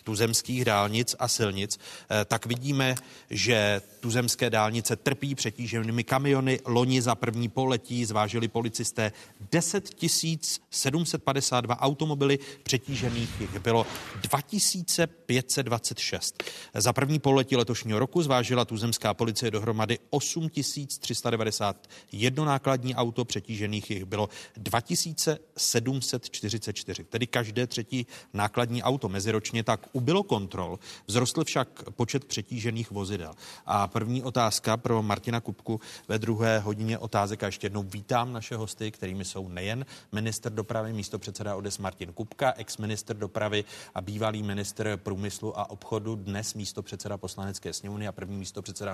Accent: native